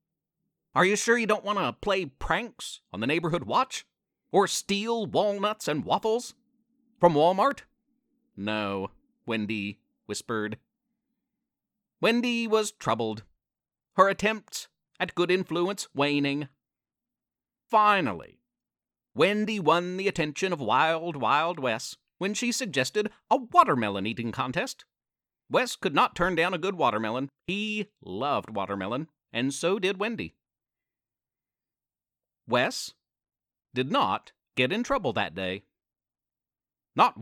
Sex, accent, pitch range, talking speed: male, American, 130-215 Hz, 115 wpm